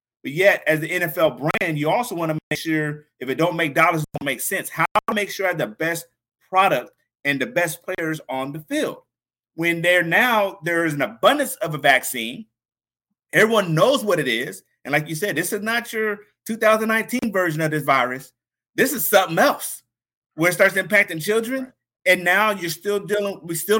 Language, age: English, 30-49